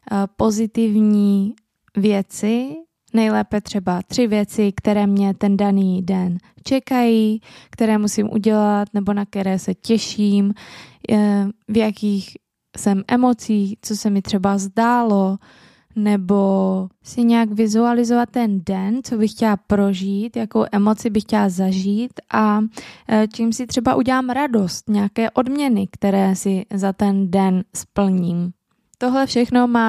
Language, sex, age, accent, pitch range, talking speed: Czech, female, 20-39, native, 200-225 Hz, 120 wpm